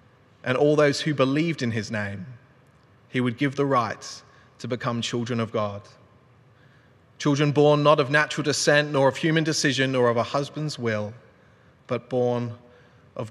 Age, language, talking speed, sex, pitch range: 30-49, English, 160 wpm, male, 120-155 Hz